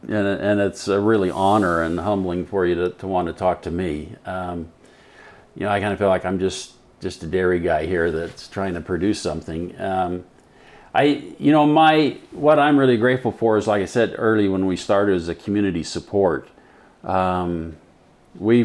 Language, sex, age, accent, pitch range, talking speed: English, male, 50-69, American, 90-105 Hz, 195 wpm